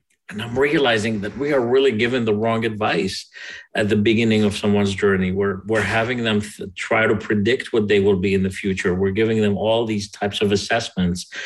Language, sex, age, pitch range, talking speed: English, male, 40-59, 100-115 Hz, 210 wpm